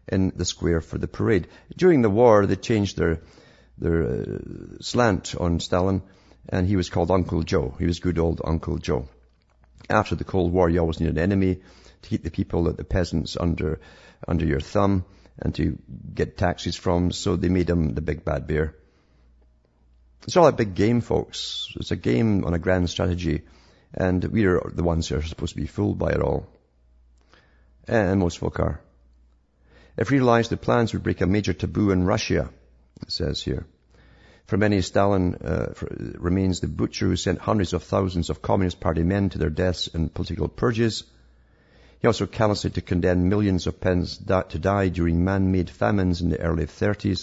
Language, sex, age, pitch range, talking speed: English, male, 50-69, 80-95 Hz, 185 wpm